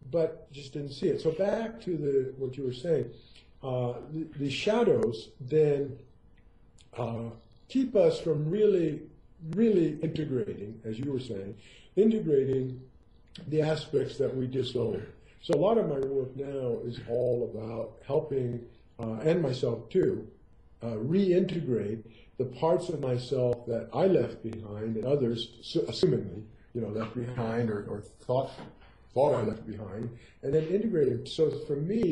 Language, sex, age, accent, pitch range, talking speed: English, male, 50-69, American, 115-155 Hz, 150 wpm